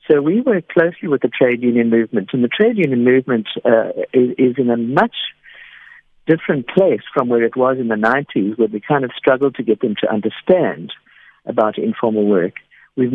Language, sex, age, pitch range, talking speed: English, male, 60-79, 115-135 Hz, 195 wpm